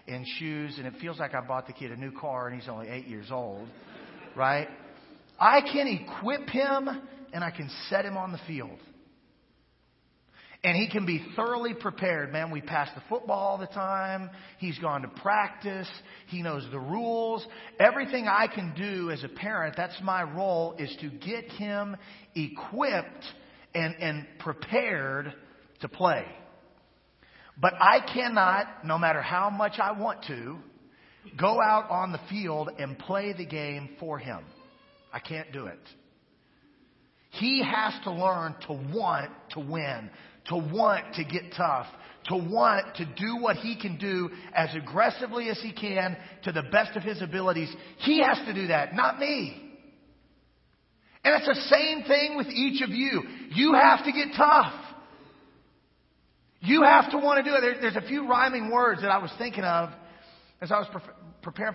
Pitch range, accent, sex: 160-230 Hz, American, male